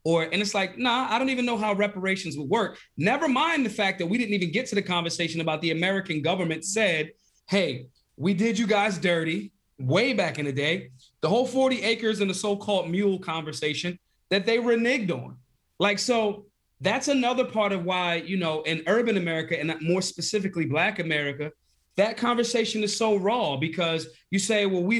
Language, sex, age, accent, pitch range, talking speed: English, male, 30-49, American, 160-215 Hz, 195 wpm